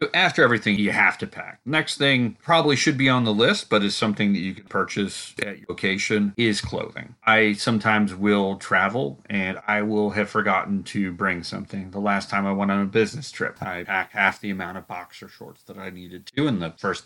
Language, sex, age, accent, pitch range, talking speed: English, male, 40-59, American, 95-125 Hz, 220 wpm